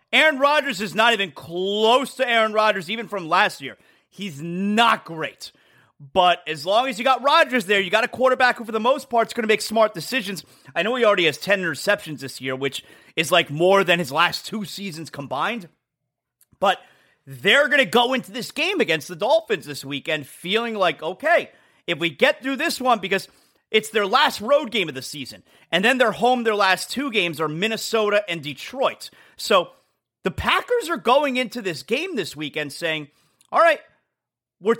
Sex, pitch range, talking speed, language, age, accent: male, 155-235 Hz, 200 wpm, English, 30-49, American